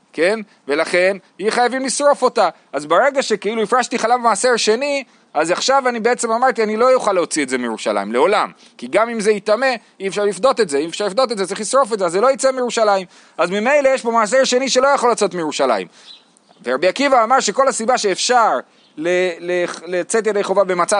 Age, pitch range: 30-49, 190-250 Hz